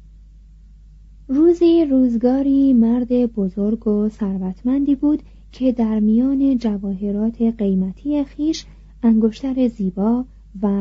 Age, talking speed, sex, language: 30-49, 90 wpm, female, Persian